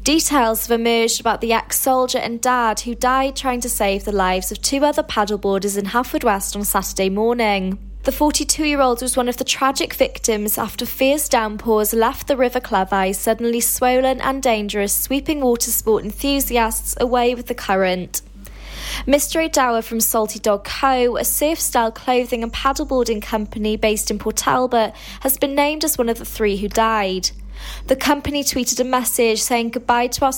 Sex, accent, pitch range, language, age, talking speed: female, British, 210-260 Hz, English, 20-39, 170 wpm